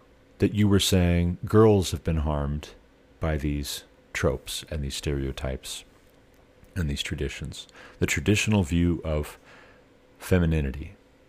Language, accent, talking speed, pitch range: English, American, 115 wpm, 75-100 Hz